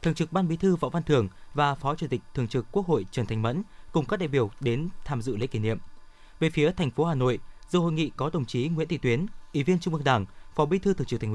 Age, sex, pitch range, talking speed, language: 20-39, male, 120-160 Hz, 290 wpm, Vietnamese